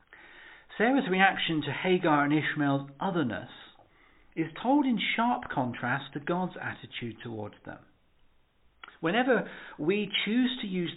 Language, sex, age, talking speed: English, male, 50-69, 120 wpm